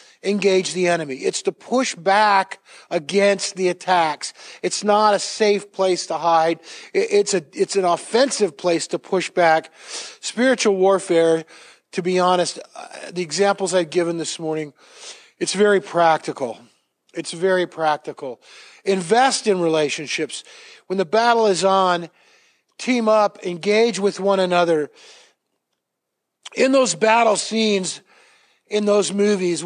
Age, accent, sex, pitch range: 50-69, American, male, 175-210 Hz